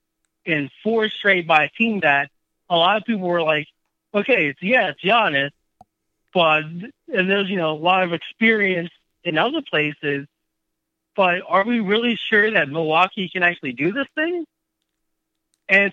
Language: English